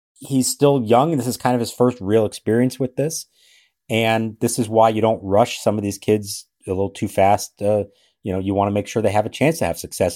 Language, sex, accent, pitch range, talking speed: English, male, American, 95-120 Hz, 260 wpm